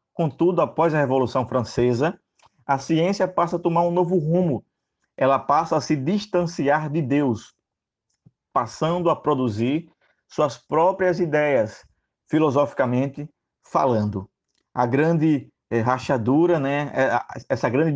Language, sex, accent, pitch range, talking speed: Portuguese, male, Brazilian, 125-155 Hz, 115 wpm